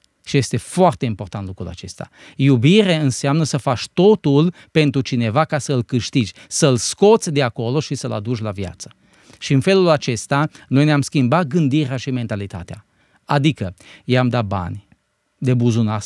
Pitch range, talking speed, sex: 120-150 Hz, 155 wpm, male